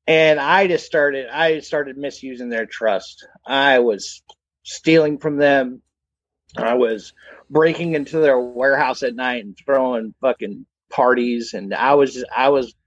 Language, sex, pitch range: English, male, 125-205 Hz